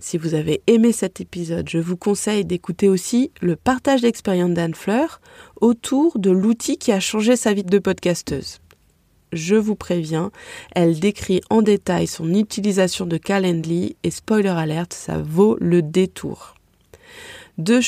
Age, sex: 20-39, female